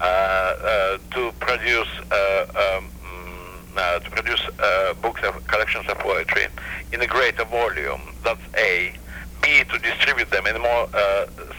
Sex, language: male, English